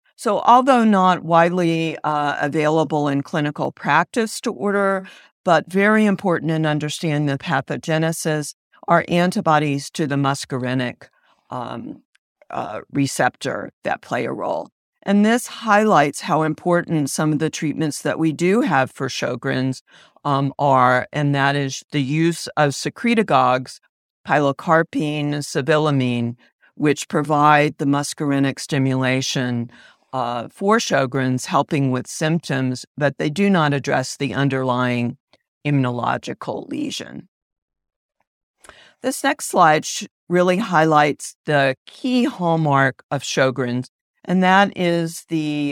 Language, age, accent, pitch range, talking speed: English, 50-69, American, 135-170 Hz, 120 wpm